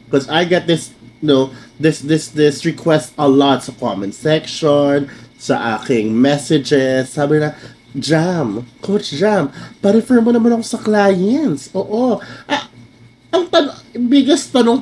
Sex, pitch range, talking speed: male, 125-205 Hz, 140 wpm